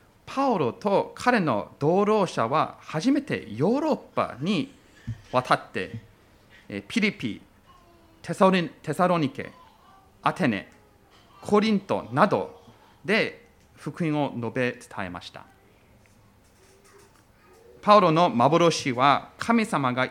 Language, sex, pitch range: Japanese, male, 115-190 Hz